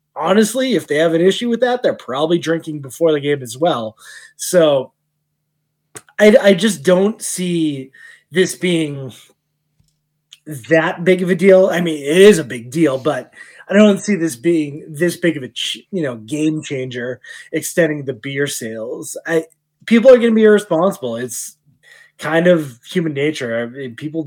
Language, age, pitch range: English, 20-39, 130-180 Hz